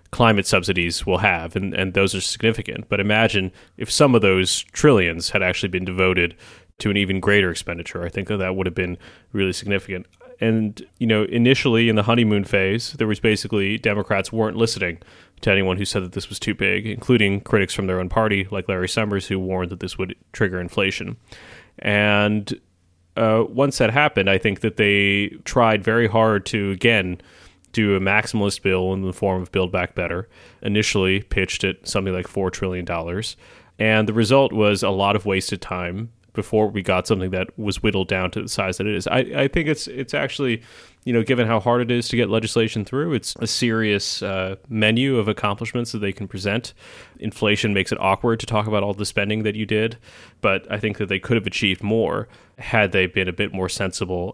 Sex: male